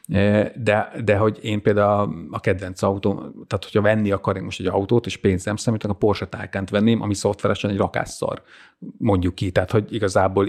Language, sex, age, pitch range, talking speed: Hungarian, male, 30-49, 100-115 Hz, 185 wpm